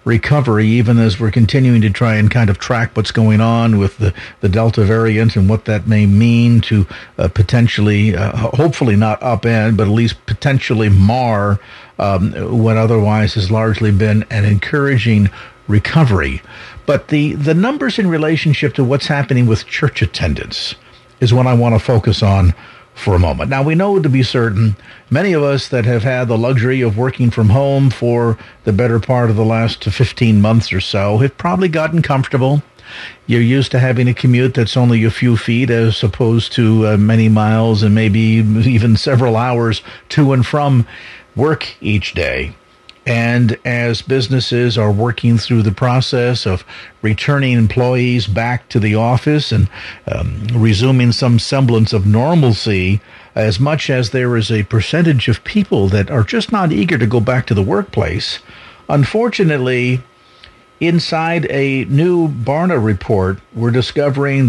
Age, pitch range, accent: 50-69, 110-135 Hz, American